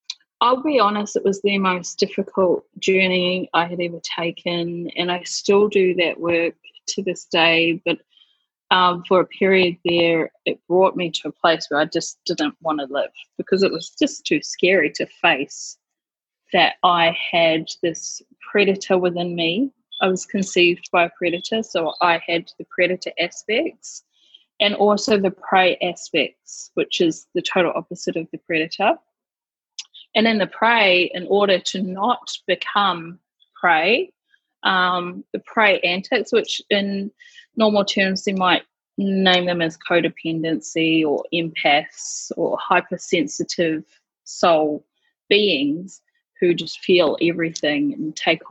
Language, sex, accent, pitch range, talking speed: English, female, Australian, 165-205 Hz, 145 wpm